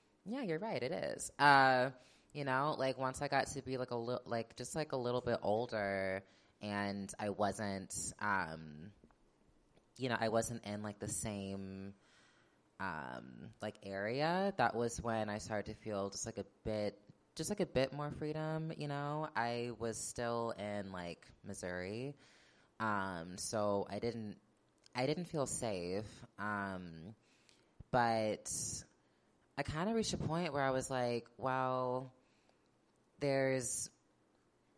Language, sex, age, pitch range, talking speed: English, female, 20-39, 105-135 Hz, 150 wpm